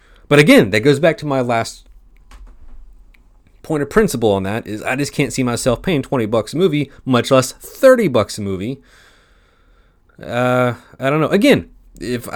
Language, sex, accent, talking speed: English, male, American, 175 wpm